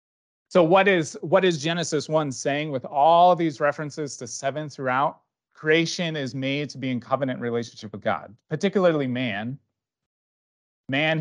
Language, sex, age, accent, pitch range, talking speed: English, male, 30-49, American, 120-155 Hz, 155 wpm